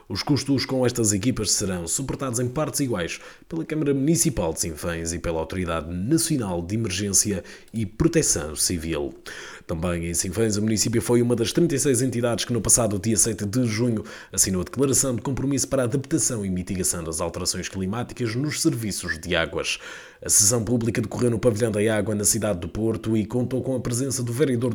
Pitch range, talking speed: 95-135 Hz, 185 wpm